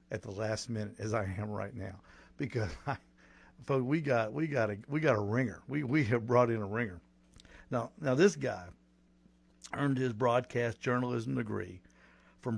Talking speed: 175 wpm